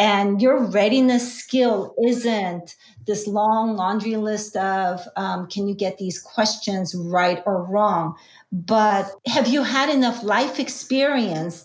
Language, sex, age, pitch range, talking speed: English, female, 40-59, 200-240 Hz, 135 wpm